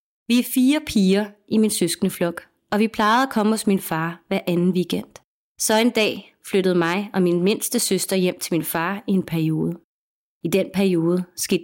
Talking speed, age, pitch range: 195 wpm, 30-49, 175-210 Hz